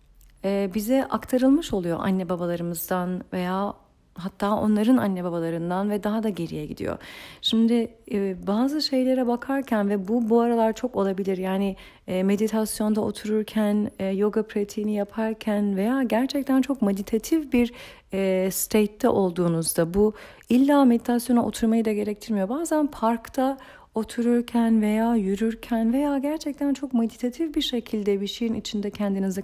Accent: native